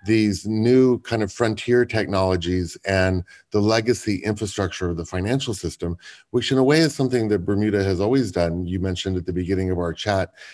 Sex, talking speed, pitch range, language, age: male, 190 wpm, 90-115 Hz, English, 30-49